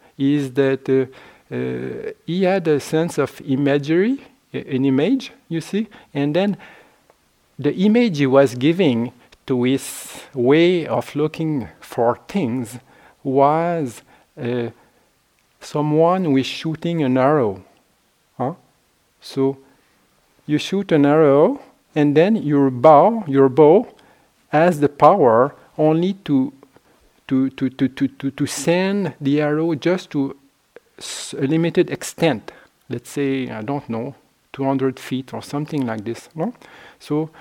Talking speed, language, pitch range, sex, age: 125 wpm, English, 135-165 Hz, male, 50-69